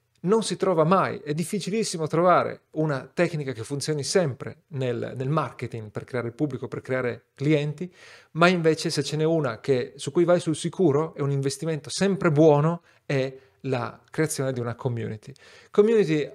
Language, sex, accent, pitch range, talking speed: Italian, male, native, 130-165 Hz, 170 wpm